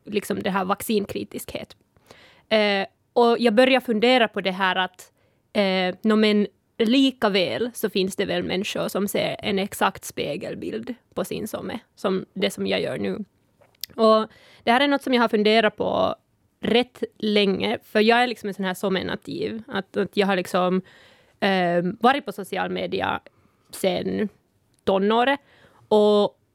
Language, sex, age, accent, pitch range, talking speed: Swedish, female, 20-39, native, 190-220 Hz, 155 wpm